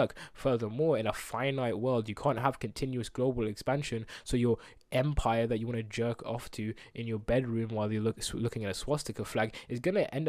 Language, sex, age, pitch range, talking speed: English, male, 20-39, 115-155 Hz, 205 wpm